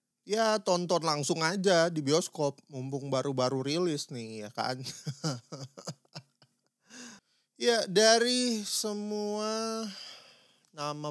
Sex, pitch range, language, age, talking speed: male, 125-170 Hz, Indonesian, 30-49, 85 wpm